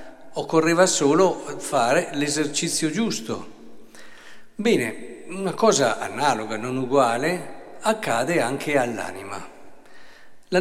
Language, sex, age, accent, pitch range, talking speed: Italian, male, 50-69, native, 130-170 Hz, 85 wpm